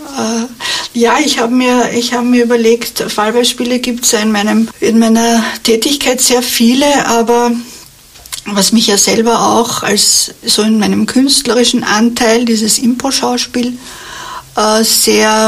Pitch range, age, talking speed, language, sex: 220-240 Hz, 60-79, 120 wpm, German, female